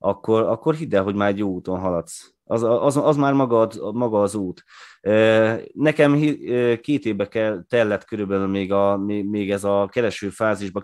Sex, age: male, 30-49